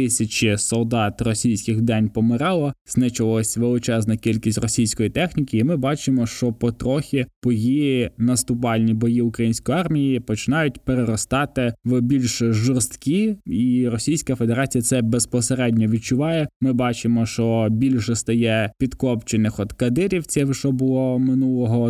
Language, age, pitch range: Ukrainian, 20-39, 115-130 Hz